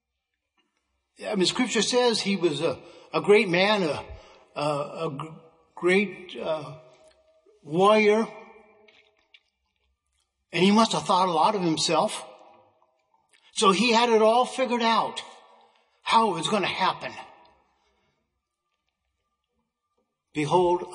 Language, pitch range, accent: English, 160-215 Hz, American